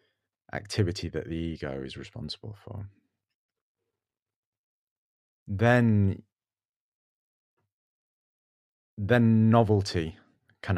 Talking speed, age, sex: 60 wpm, 30-49, male